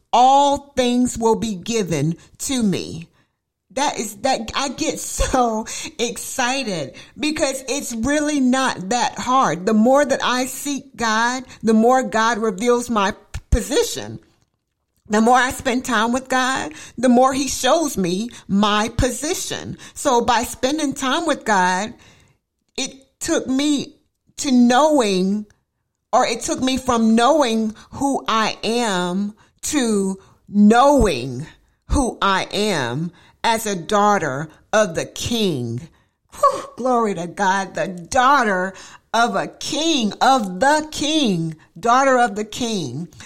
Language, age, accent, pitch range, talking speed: English, 50-69, American, 205-260 Hz, 130 wpm